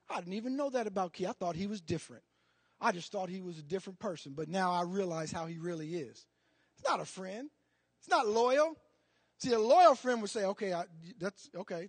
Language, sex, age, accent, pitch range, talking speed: English, male, 40-59, American, 180-285 Hz, 225 wpm